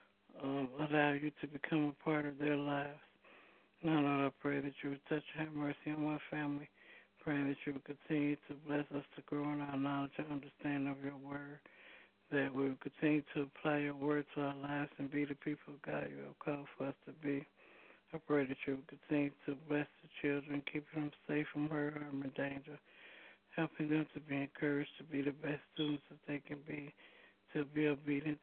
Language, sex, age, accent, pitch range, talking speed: English, male, 60-79, American, 140-150 Hz, 215 wpm